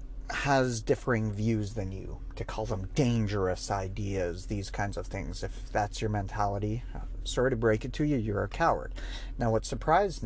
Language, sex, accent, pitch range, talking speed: English, male, American, 95-120 Hz, 175 wpm